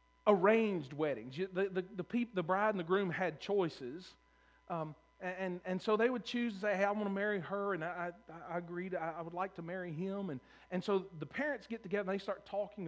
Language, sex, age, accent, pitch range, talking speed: English, male, 40-59, American, 160-200 Hz, 240 wpm